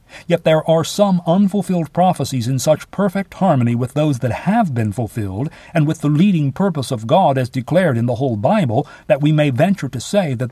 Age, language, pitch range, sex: 50-69, English, 125-170 Hz, male